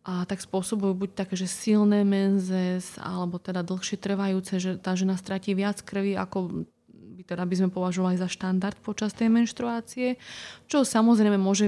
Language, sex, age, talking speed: Slovak, female, 20-39, 165 wpm